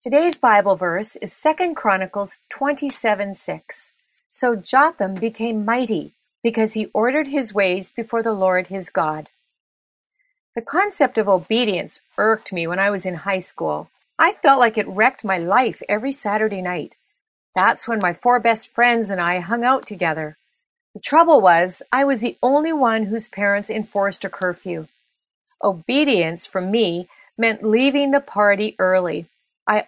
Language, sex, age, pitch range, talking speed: English, female, 40-59, 190-255 Hz, 155 wpm